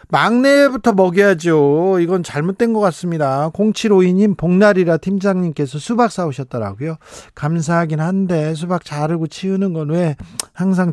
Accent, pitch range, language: native, 145-190 Hz, Korean